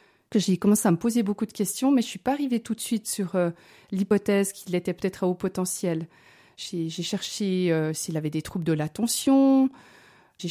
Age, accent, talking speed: 30-49, French, 215 wpm